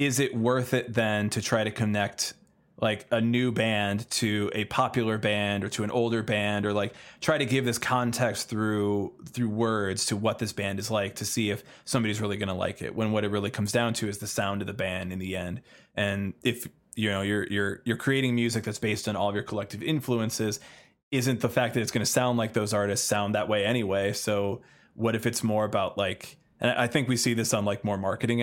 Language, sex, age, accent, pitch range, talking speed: English, male, 20-39, American, 105-125 Hz, 235 wpm